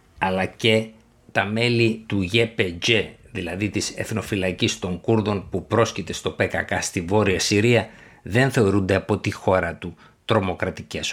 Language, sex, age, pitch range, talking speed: Greek, male, 60-79, 95-115 Hz, 135 wpm